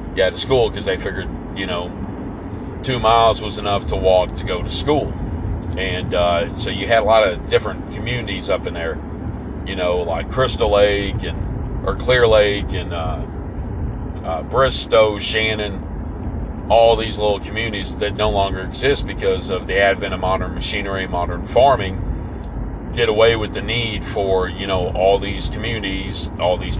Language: English